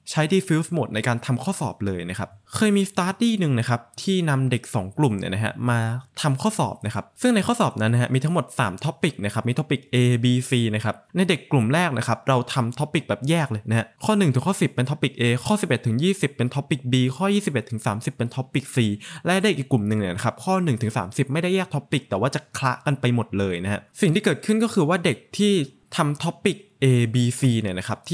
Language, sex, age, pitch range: Thai, male, 20-39, 120-165 Hz